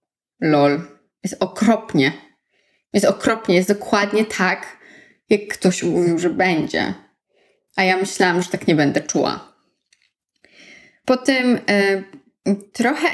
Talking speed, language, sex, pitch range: 115 wpm, Polish, female, 180-245 Hz